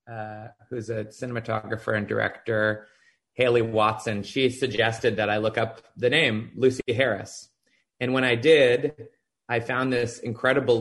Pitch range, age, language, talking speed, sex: 110-125 Hz, 20-39, English, 145 wpm, male